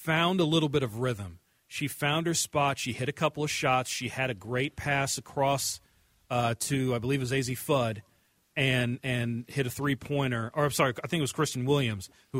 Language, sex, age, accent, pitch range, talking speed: English, male, 40-59, American, 125-150 Hz, 220 wpm